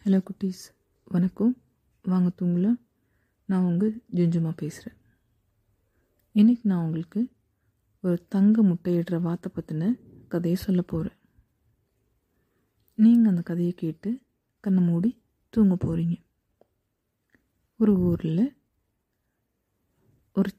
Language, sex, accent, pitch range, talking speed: Tamil, female, native, 165-210 Hz, 90 wpm